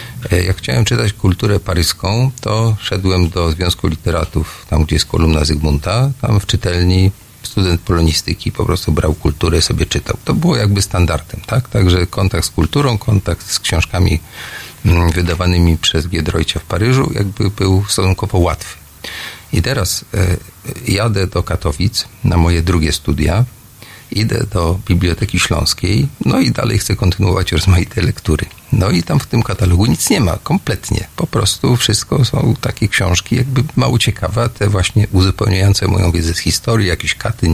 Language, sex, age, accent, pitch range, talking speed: Polish, male, 40-59, native, 90-115 Hz, 150 wpm